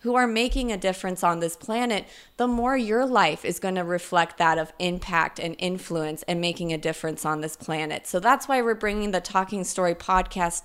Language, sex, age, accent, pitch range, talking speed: English, female, 20-39, American, 175-225 Hz, 210 wpm